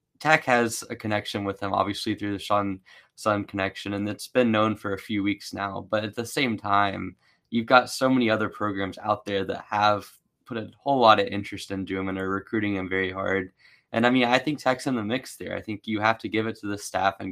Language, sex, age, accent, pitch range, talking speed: English, male, 10-29, American, 100-115 Hz, 245 wpm